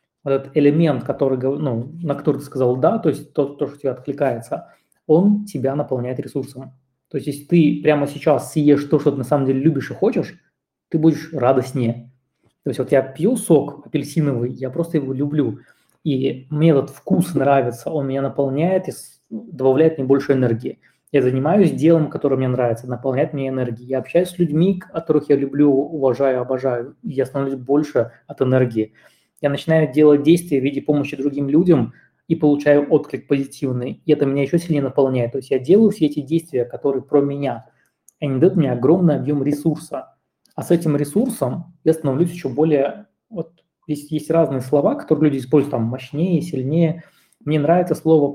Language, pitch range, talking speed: Russian, 135-160 Hz, 180 wpm